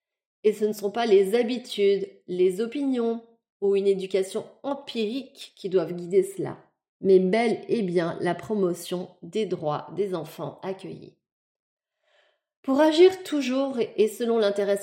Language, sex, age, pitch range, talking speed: French, female, 30-49, 185-230 Hz, 140 wpm